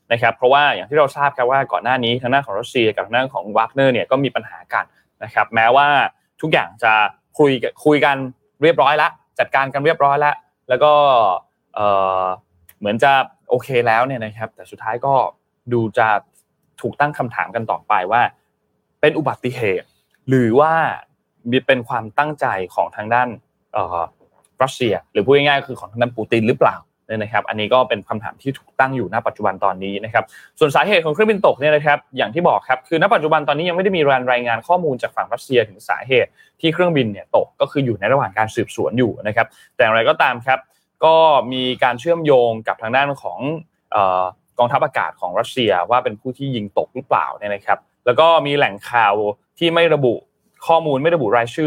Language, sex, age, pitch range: Thai, male, 20-39, 115-145 Hz